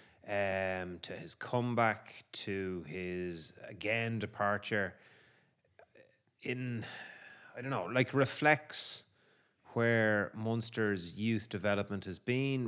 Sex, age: male, 30-49